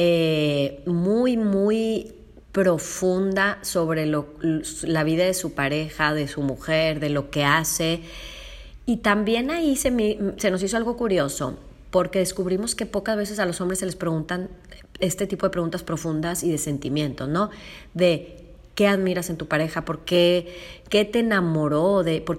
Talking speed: 160 wpm